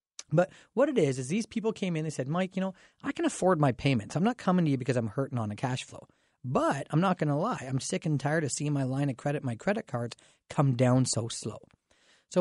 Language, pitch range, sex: English, 135-190 Hz, male